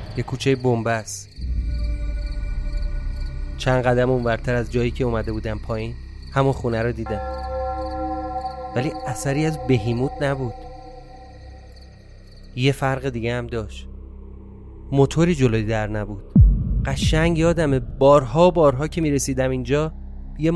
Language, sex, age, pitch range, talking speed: Persian, male, 30-49, 100-145 Hz, 120 wpm